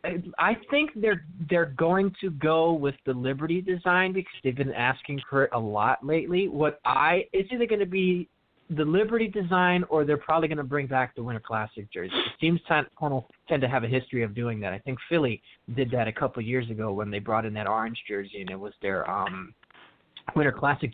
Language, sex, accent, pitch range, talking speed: English, male, American, 130-180 Hz, 215 wpm